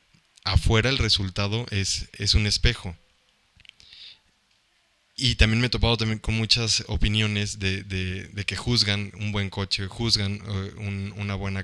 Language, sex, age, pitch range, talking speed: Spanish, male, 20-39, 95-110 Hz, 135 wpm